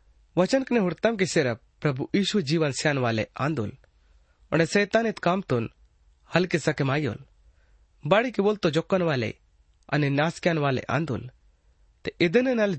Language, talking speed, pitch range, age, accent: Hindi, 95 wpm, 125-195 Hz, 30-49, native